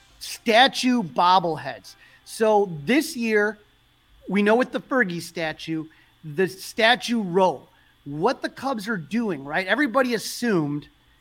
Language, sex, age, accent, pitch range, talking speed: English, male, 30-49, American, 165-205 Hz, 120 wpm